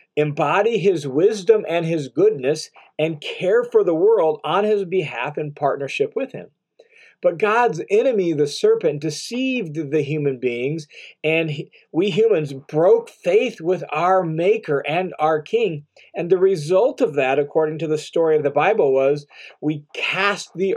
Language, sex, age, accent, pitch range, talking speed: English, male, 40-59, American, 150-255 Hz, 155 wpm